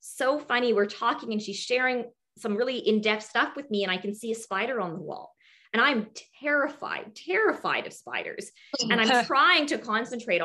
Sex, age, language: female, 20-39, English